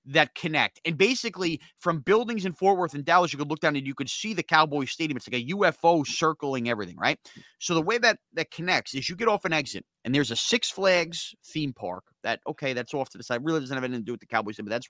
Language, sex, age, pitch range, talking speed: English, male, 30-49, 125-190 Hz, 265 wpm